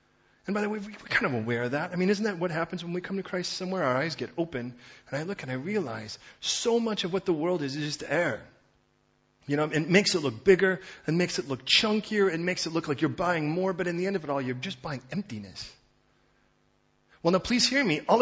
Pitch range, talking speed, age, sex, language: 145-195 Hz, 260 wpm, 40-59, male, English